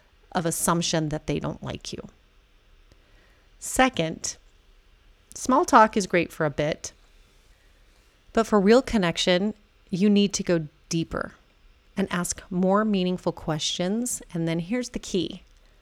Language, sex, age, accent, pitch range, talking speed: English, female, 30-49, American, 160-200 Hz, 130 wpm